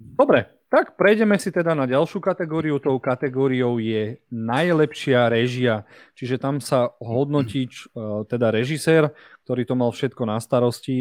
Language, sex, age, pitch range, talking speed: Slovak, male, 40-59, 115-140 Hz, 135 wpm